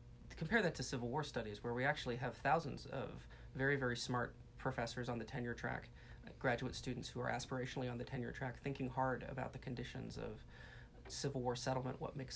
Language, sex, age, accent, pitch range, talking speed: English, male, 30-49, American, 125-135 Hz, 195 wpm